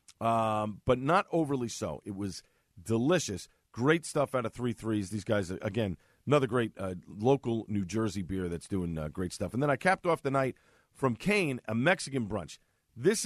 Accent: American